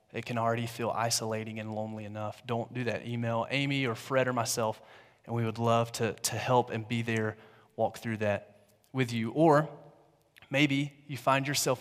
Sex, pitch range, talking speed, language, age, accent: male, 115-135 Hz, 190 wpm, English, 30-49, American